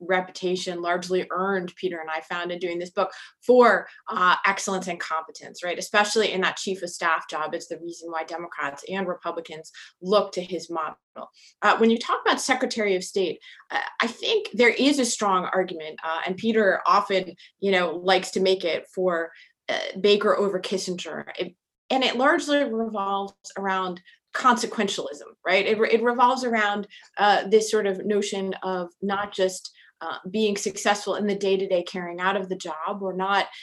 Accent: American